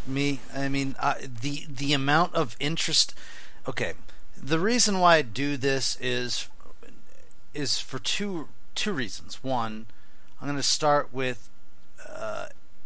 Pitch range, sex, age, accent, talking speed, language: 110-140 Hz, male, 40-59, American, 130 wpm, English